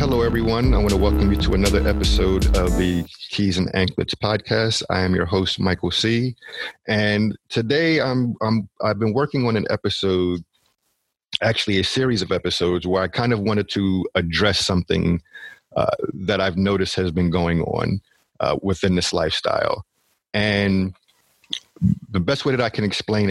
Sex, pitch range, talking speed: male, 90-105 Hz, 165 wpm